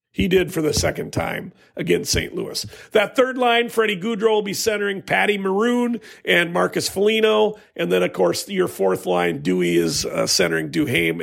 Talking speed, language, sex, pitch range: 180 wpm, English, male, 165-225 Hz